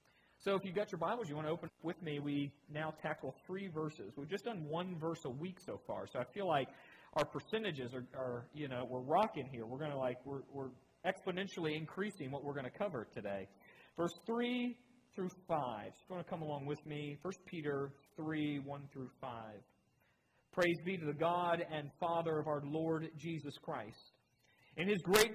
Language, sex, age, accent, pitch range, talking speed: English, male, 40-59, American, 135-185 Hz, 210 wpm